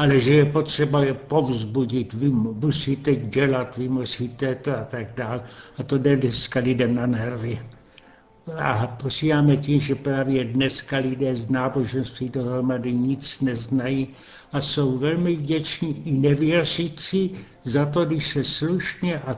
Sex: male